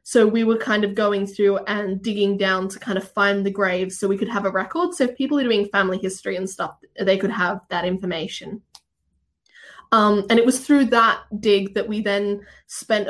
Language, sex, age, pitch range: English, female, 10-29, 200-250 Hz